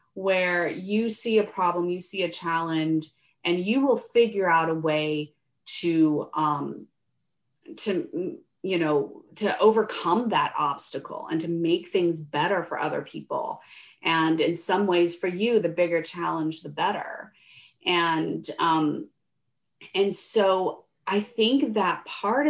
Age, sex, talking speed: 30-49, female, 140 wpm